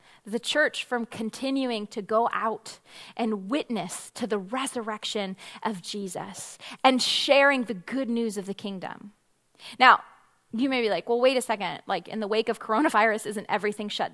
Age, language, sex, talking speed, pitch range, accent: 20-39, English, female, 170 wpm, 230-310 Hz, American